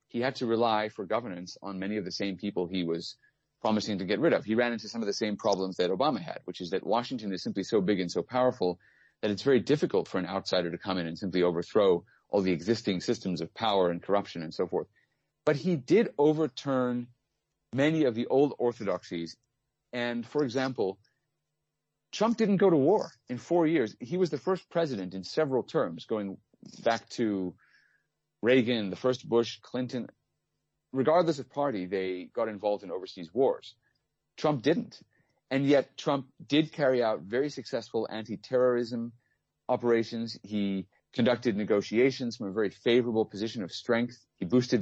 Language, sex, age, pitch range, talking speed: English, male, 30-49, 100-140 Hz, 180 wpm